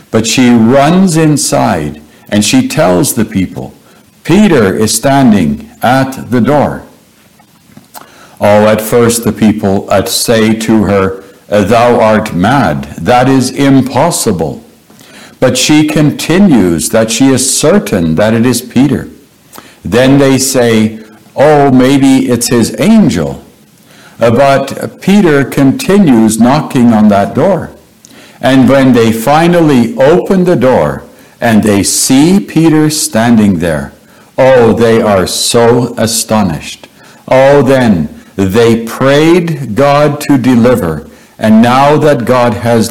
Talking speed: 120 wpm